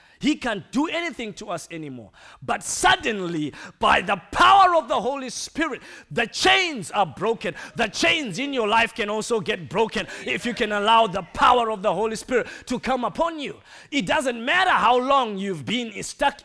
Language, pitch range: English, 180-255 Hz